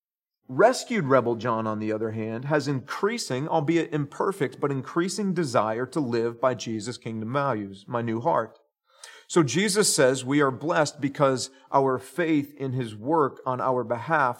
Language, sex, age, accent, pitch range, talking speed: English, male, 40-59, American, 120-155 Hz, 160 wpm